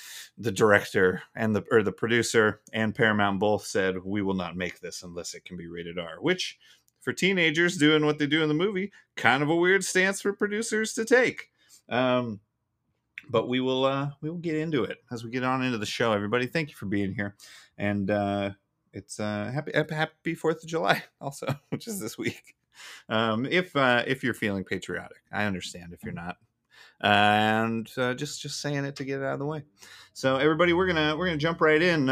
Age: 30-49